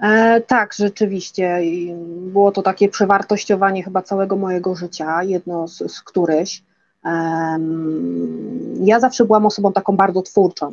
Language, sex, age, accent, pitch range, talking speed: Polish, female, 30-49, native, 170-205 Hz, 135 wpm